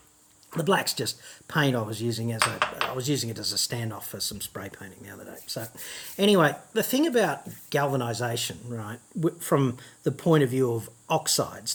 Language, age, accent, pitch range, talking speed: English, 40-59, Australian, 115-150 Hz, 185 wpm